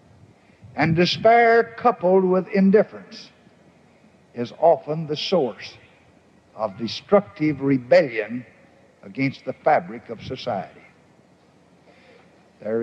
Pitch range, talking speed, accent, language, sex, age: 125-185 Hz, 85 wpm, American, English, male, 60-79